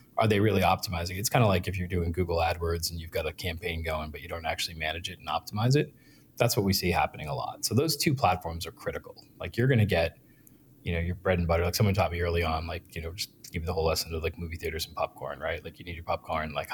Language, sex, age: English, male, 30-49